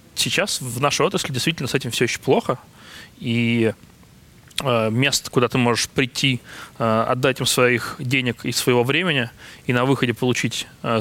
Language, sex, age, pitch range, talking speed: Russian, male, 20-39, 120-140 Hz, 160 wpm